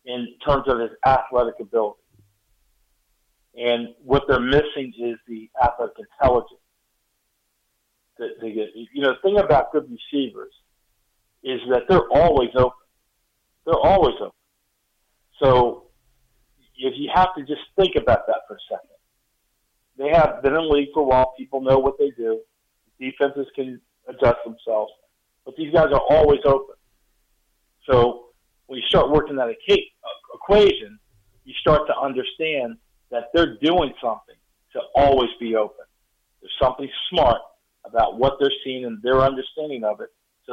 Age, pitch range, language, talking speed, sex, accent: 50-69, 115-140 Hz, English, 145 wpm, male, American